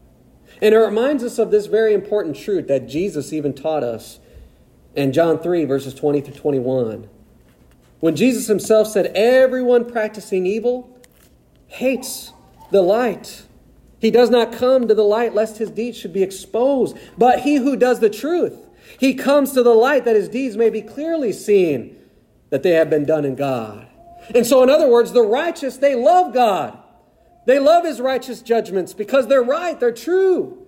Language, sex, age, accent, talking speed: English, male, 40-59, American, 170 wpm